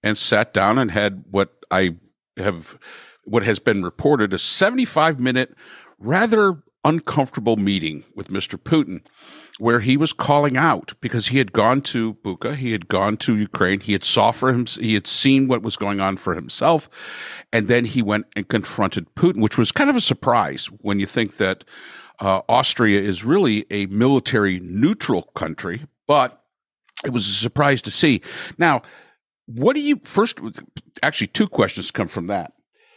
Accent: American